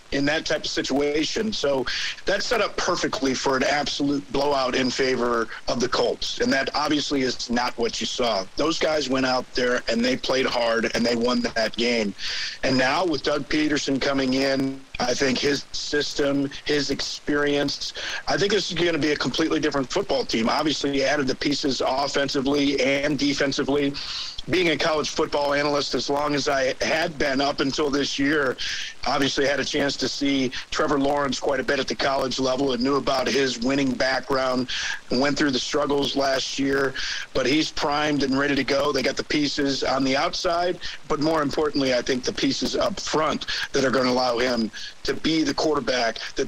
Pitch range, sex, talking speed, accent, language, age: 130-145 Hz, male, 195 wpm, American, English, 50-69